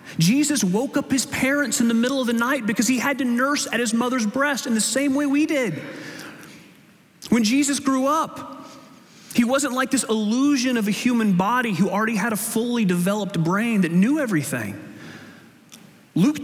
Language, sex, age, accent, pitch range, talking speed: English, male, 30-49, American, 160-245 Hz, 185 wpm